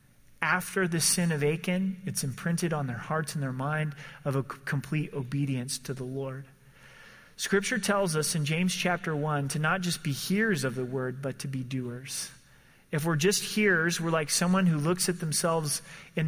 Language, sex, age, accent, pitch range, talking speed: English, male, 30-49, American, 140-175 Hz, 190 wpm